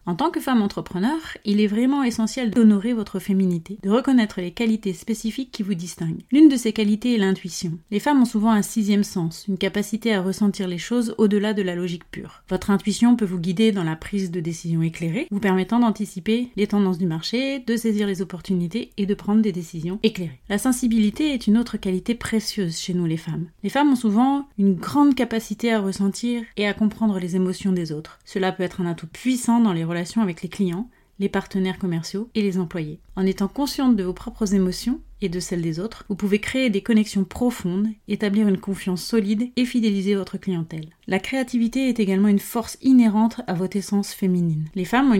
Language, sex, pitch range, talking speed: French, female, 185-230 Hz, 205 wpm